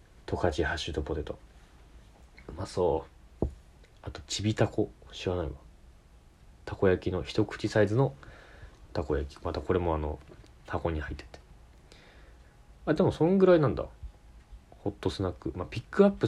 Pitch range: 70-100 Hz